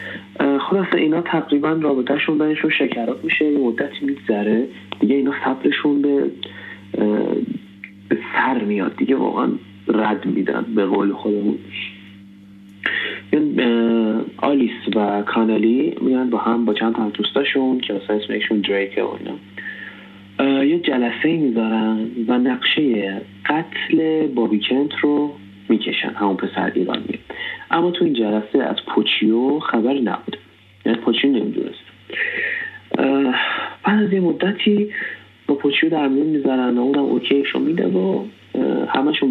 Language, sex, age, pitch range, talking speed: Persian, male, 30-49, 105-140 Hz, 120 wpm